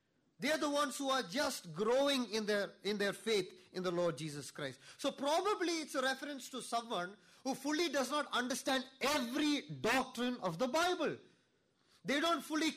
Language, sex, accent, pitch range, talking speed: English, male, Indian, 220-300 Hz, 175 wpm